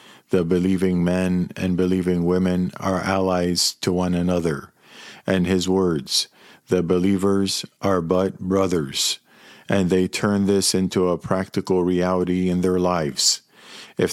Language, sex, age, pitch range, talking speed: English, male, 50-69, 90-100 Hz, 130 wpm